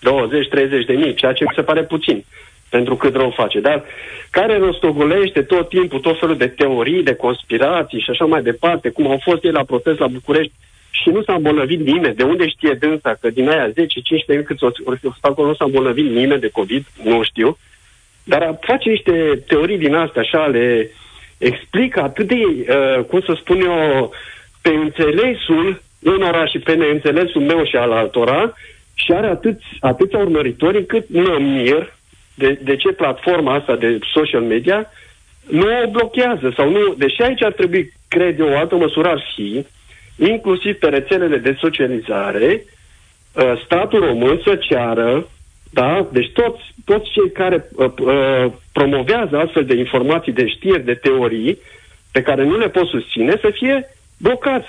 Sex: male